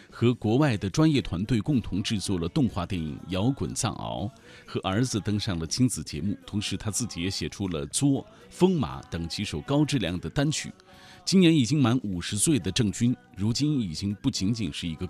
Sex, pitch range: male, 85-125 Hz